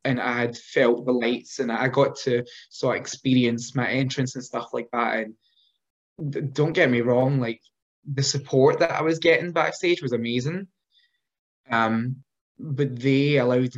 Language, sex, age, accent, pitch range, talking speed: English, male, 10-29, British, 120-145 Hz, 170 wpm